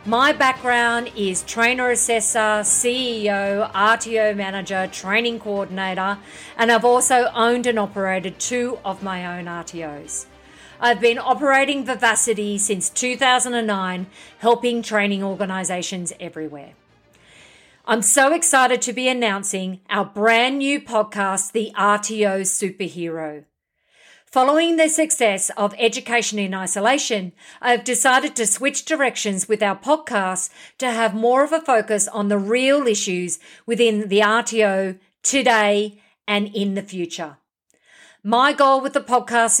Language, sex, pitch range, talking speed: English, female, 195-245 Hz, 125 wpm